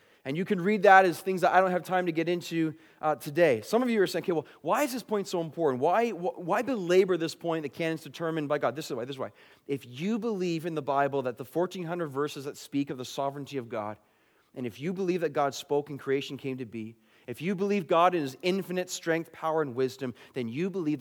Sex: male